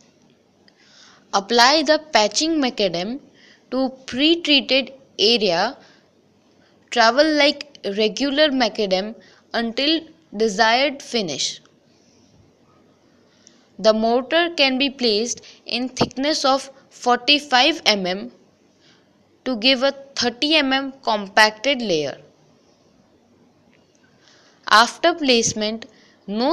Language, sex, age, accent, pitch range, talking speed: English, female, 20-39, Indian, 225-280 Hz, 80 wpm